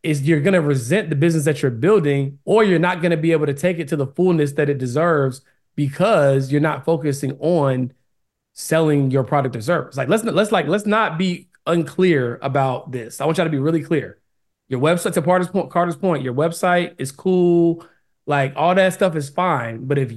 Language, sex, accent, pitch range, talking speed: English, male, American, 140-170 Hz, 205 wpm